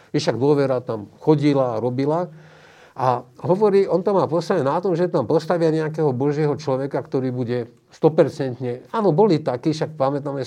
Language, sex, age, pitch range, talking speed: Slovak, male, 50-69, 130-165 Hz, 155 wpm